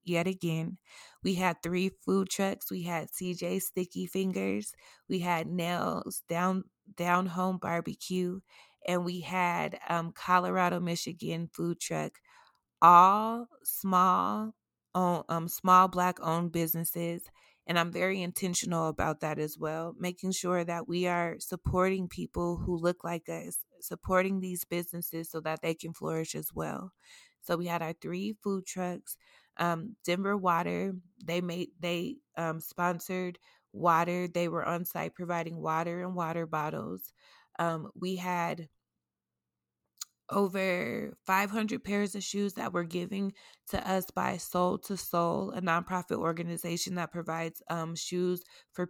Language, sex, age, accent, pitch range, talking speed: English, female, 20-39, American, 170-185 Hz, 140 wpm